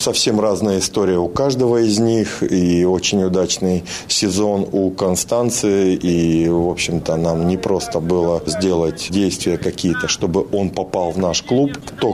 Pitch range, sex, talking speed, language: 85-100 Hz, male, 150 wpm, Russian